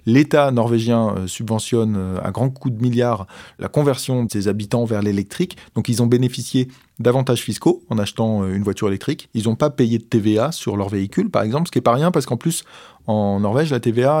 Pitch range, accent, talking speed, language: 110-140 Hz, French, 205 wpm, French